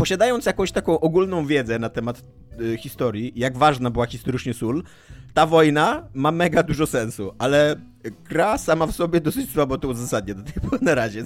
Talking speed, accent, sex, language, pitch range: 180 wpm, native, male, Polish, 115-145 Hz